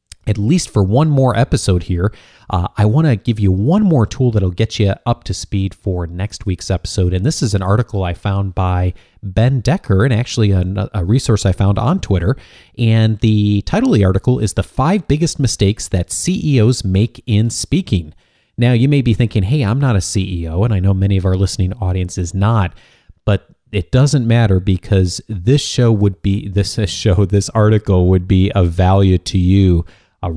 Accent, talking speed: American, 200 wpm